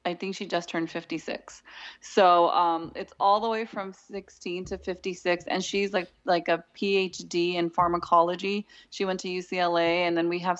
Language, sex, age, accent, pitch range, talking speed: English, female, 20-39, American, 170-185 Hz, 180 wpm